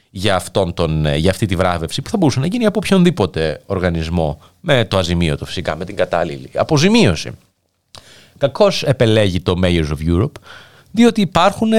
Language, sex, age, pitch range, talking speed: Greek, male, 30-49, 95-155 Hz, 160 wpm